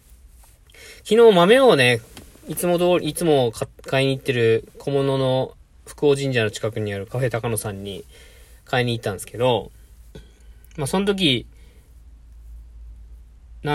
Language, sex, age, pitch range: Japanese, male, 20-39, 105-145 Hz